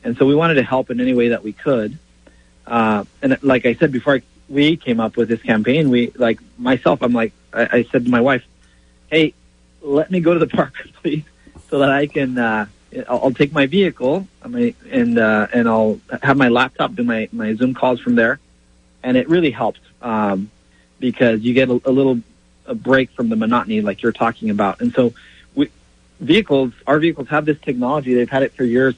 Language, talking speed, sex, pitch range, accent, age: English, 215 wpm, male, 110-140 Hz, American, 40-59